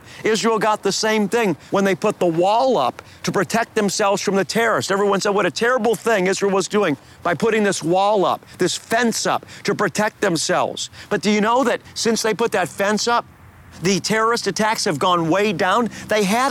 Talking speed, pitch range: 205 wpm, 175-220 Hz